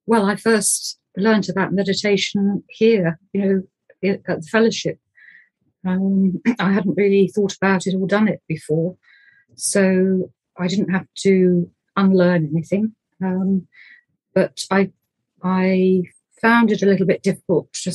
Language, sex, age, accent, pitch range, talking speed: English, female, 40-59, British, 180-200 Hz, 135 wpm